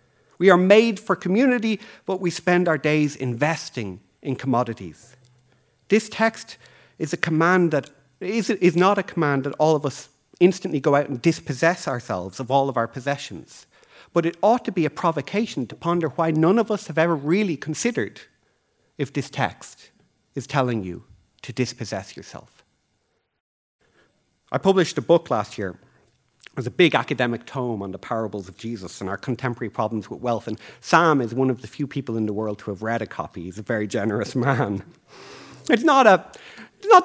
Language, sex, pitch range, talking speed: English, male, 115-170 Hz, 180 wpm